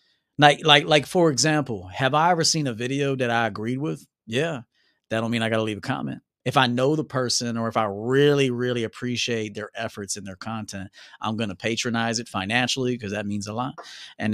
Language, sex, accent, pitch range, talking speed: English, male, American, 110-150 Hz, 220 wpm